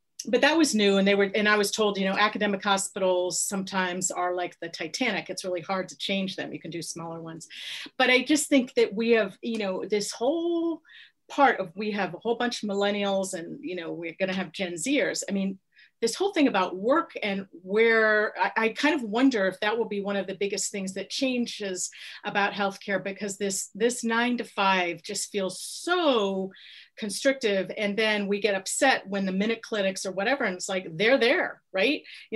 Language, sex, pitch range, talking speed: English, female, 190-230 Hz, 215 wpm